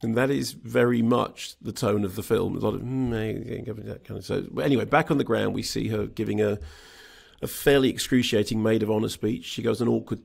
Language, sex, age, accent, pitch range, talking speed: English, male, 40-59, British, 105-130 Hz, 235 wpm